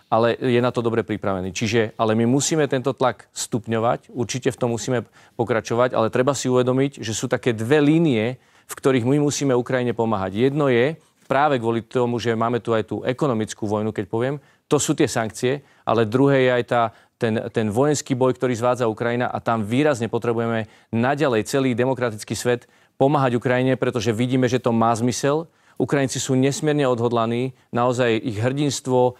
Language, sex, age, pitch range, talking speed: Czech, male, 40-59, 115-130 Hz, 175 wpm